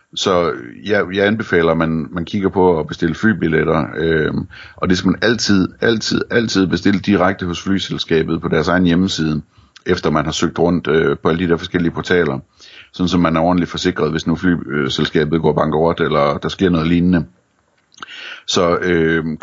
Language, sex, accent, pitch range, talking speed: Danish, male, native, 80-95 Hz, 180 wpm